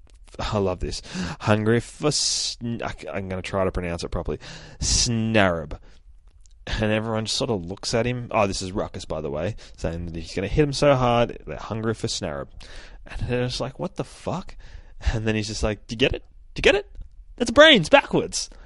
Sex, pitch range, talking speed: male, 95-135 Hz, 210 wpm